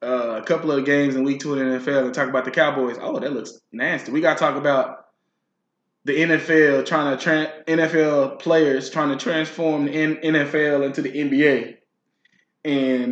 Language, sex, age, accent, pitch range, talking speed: English, male, 20-39, American, 135-180 Hz, 175 wpm